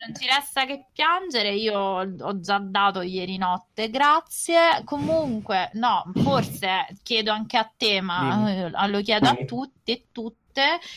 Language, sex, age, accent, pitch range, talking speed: Italian, female, 20-39, native, 180-230 Hz, 140 wpm